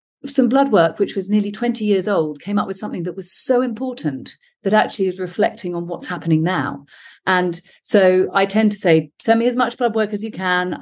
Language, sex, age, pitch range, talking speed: English, female, 40-59, 155-200 Hz, 220 wpm